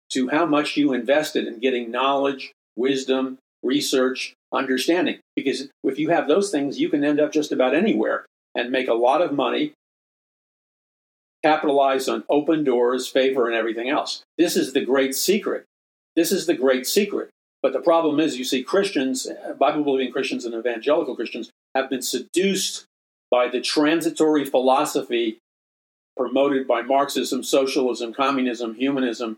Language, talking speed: English, 150 wpm